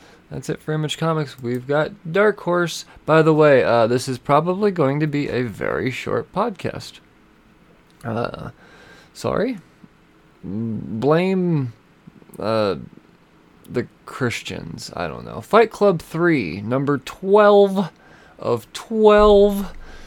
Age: 20-39